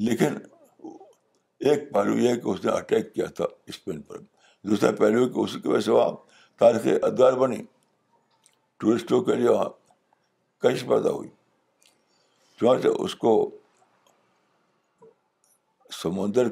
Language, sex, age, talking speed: Urdu, male, 60-79, 105 wpm